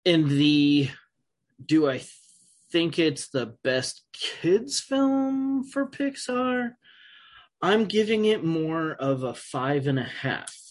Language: English